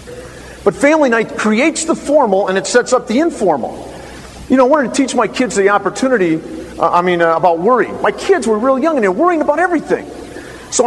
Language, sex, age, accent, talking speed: English, male, 40-59, American, 220 wpm